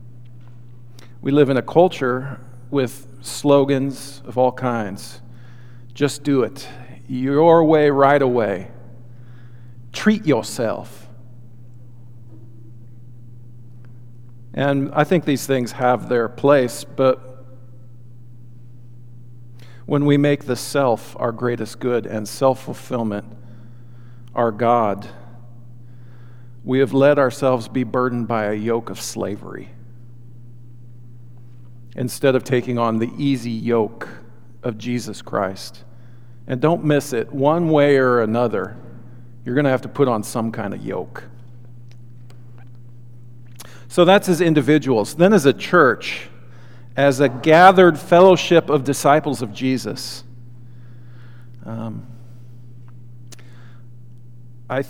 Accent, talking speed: American, 105 wpm